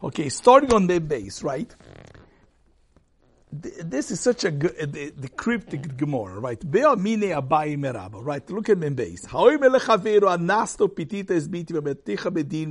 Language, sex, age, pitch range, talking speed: English, male, 60-79, 140-205 Hz, 145 wpm